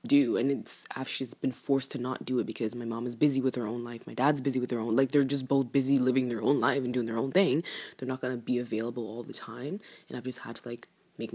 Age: 20-39